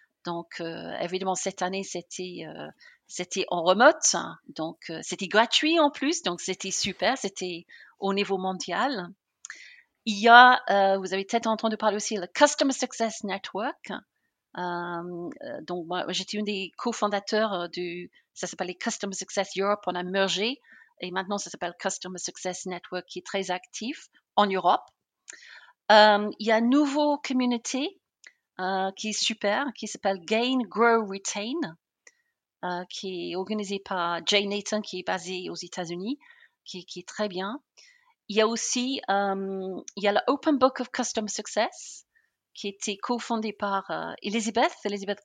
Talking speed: 165 wpm